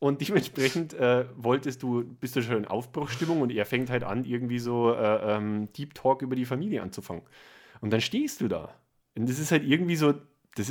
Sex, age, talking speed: male, 30-49, 205 wpm